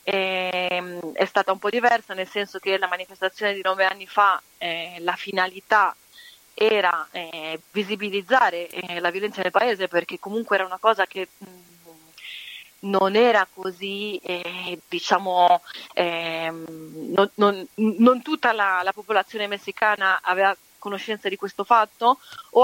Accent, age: native, 30-49